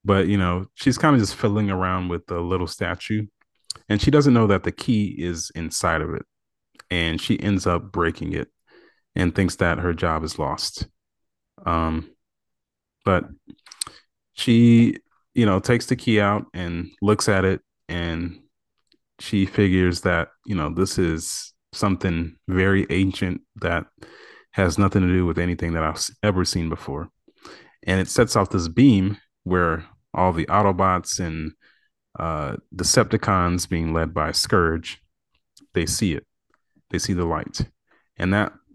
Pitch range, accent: 85-100 Hz, American